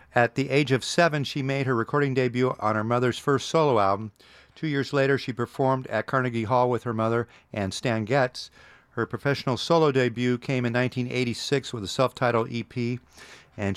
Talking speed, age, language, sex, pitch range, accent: 185 wpm, 50-69, English, male, 110-140 Hz, American